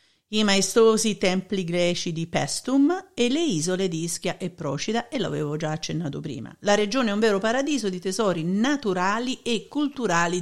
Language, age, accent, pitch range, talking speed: Italian, 50-69, native, 185-250 Hz, 165 wpm